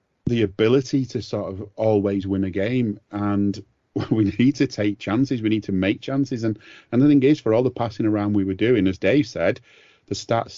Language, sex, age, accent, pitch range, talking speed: English, male, 40-59, British, 95-110 Hz, 215 wpm